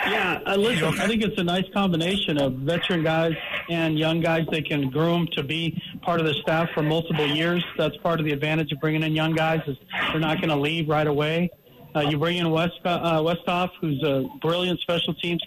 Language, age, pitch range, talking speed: English, 50-69, 160-195 Hz, 215 wpm